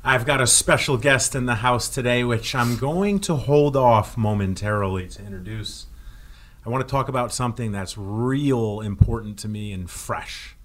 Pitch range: 95-135 Hz